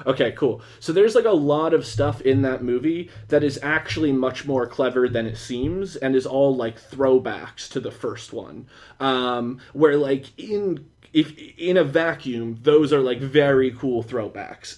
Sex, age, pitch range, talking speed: male, 20-39, 130-185 Hz, 175 wpm